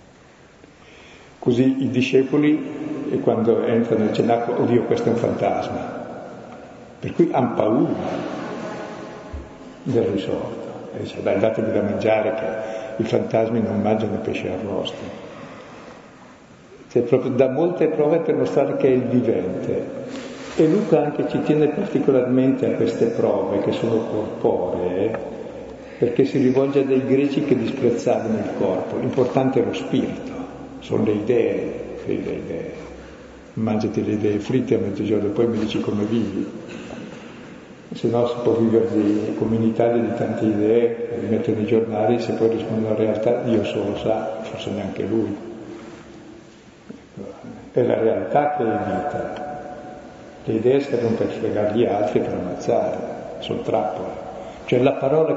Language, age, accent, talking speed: Italian, 60-79, native, 145 wpm